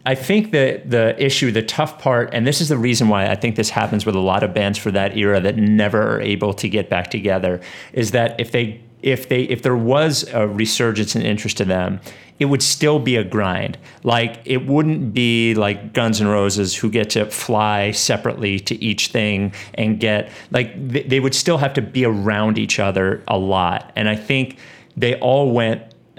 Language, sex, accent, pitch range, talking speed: English, male, American, 100-125 Hz, 215 wpm